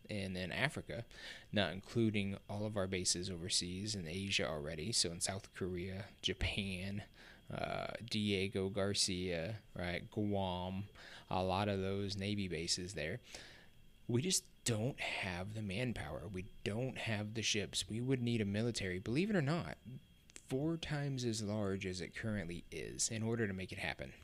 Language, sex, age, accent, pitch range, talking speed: English, male, 20-39, American, 95-120 Hz, 160 wpm